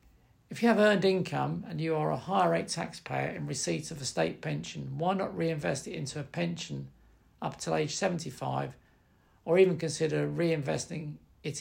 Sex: male